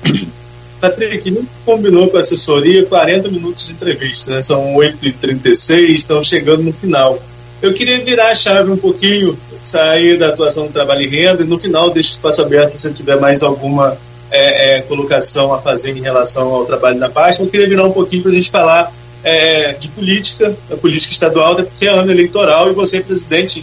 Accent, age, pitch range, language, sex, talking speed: Brazilian, 20-39, 140-185 Hz, Portuguese, male, 195 wpm